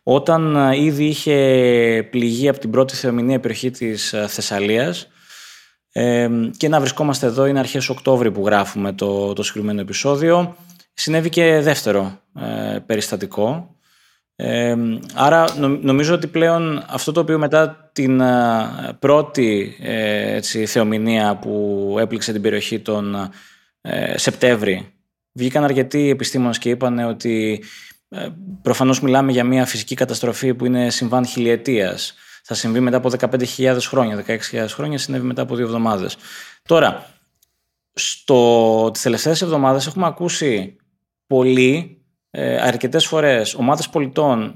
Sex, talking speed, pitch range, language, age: male, 120 wpm, 115-140 Hz, Greek, 20-39